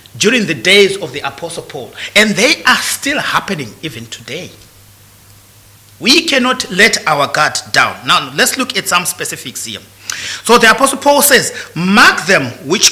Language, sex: English, male